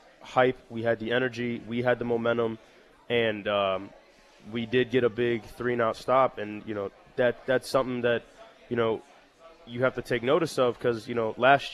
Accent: American